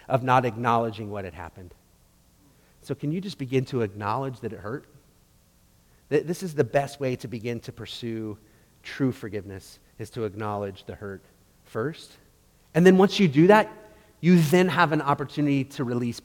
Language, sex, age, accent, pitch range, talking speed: English, male, 30-49, American, 110-155 Hz, 170 wpm